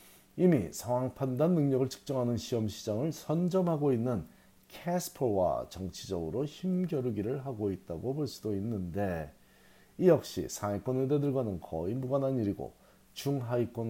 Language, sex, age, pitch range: Korean, male, 40-59, 95-140 Hz